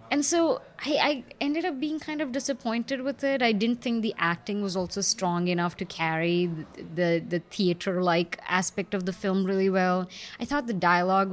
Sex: female